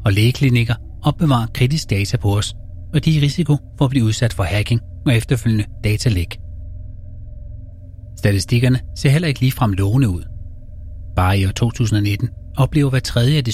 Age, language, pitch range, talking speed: 30-49, Danish, 95-130 Hz, 165 wpm